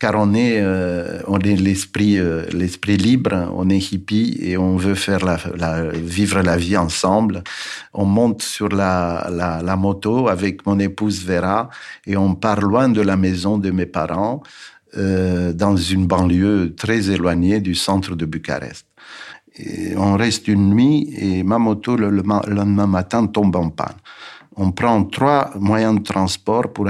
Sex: male